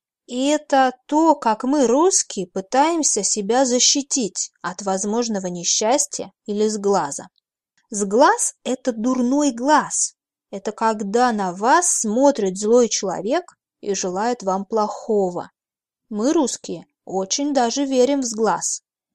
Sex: female